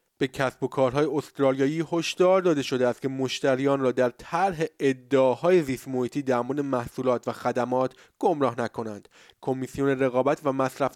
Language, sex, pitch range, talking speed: Persian, male, 130-165 Hz, 140 wpm